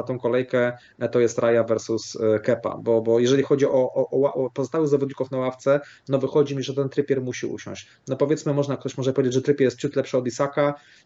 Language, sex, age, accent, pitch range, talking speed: Polish, male, 30-49, native, 125-145 Hz, 215 wpm